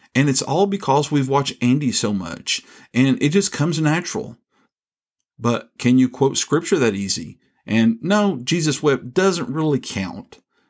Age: 40-59